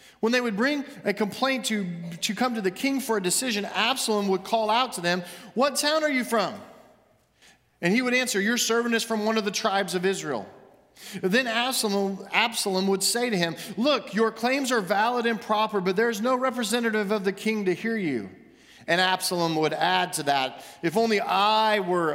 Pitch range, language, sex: 170-230 Hz, English, male